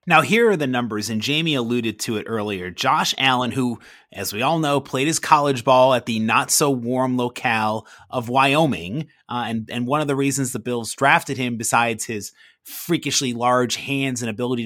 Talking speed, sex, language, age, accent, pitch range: 190 wpm, male, English, 30-49, American, 120-155 Hz